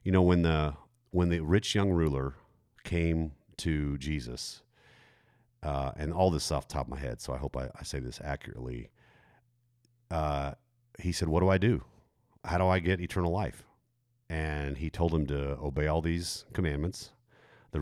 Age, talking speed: 40-59, 180 wpm